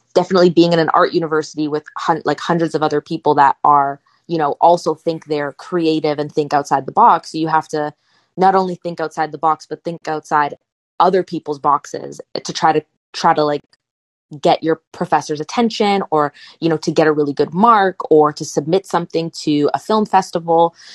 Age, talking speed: 20-39, 195 wpm